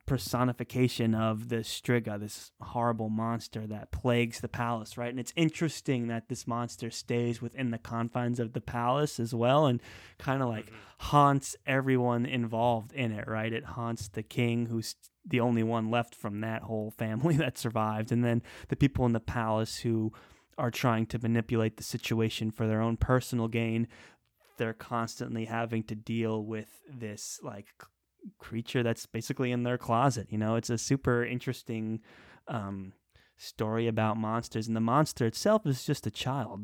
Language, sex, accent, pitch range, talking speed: English, male, American, 110-120 Hz, 170 wpm